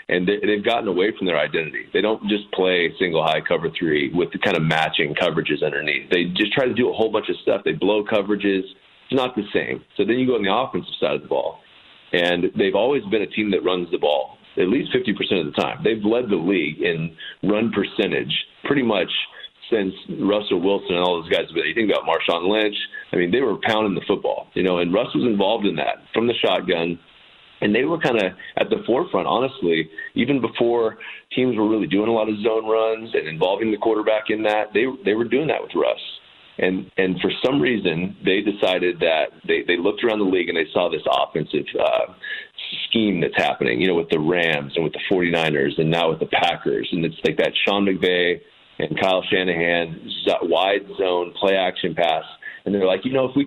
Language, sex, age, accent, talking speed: English, male, 30-49, American, 220 wpm